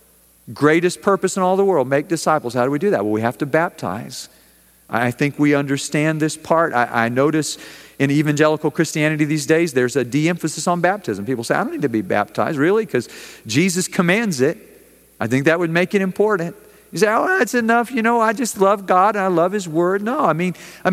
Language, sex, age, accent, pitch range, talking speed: English, male, 50-69, American, 130-190 Hz, 220 wpm